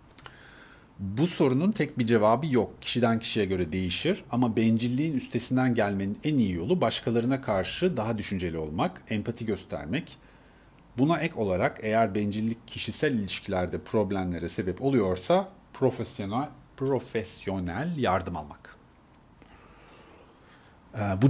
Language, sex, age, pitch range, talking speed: Turkish, male, 40-59, 95-120 Hz, 105 wpm